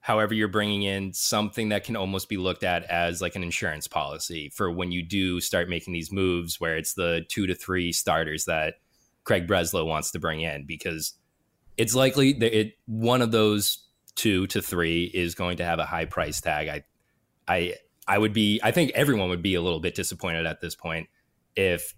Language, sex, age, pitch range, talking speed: English, male, 20-39, 85-115 Hz, 205 wpm